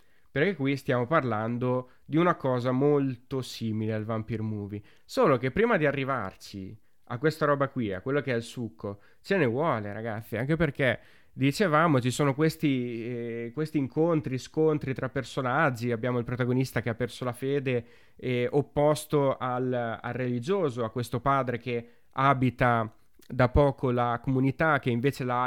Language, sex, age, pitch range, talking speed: Italian, male, 20-39, 115-140 Hz, 160 wpm